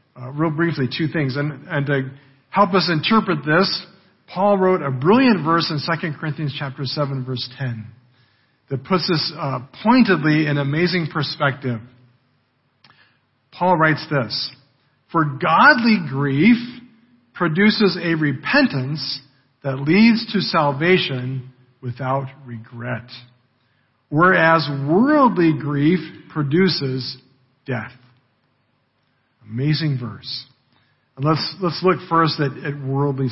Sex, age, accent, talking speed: male, 50-69, American, 110 wpm